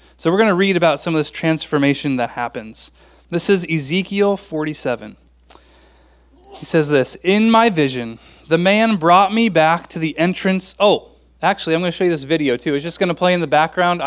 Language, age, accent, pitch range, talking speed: English, 30-49, American, 140-195 Hz, 205 wpm